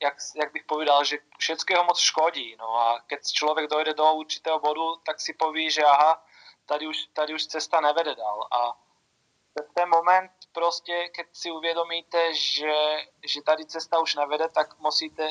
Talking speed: 175 wpm